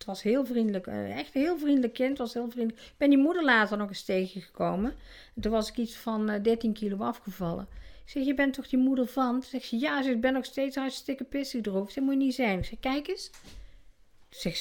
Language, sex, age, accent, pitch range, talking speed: Dutch, female, 50-69, Dutch, 190-260 Hz, 245 wpm